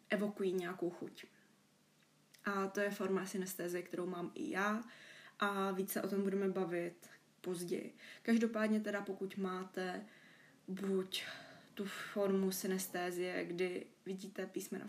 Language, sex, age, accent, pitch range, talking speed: Czech, female, 20-39, native, 185-205 Hz, 120 wpm